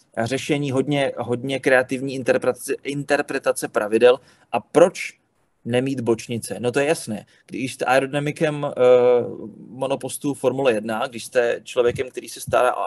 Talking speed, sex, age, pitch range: 135 wpm, male, 30-49, 130-155 Hz